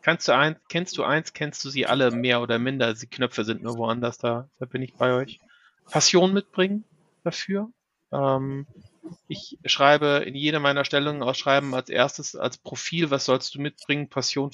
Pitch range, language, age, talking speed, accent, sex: 130-170 Hz, German, 30-49, 180 wpm, German, male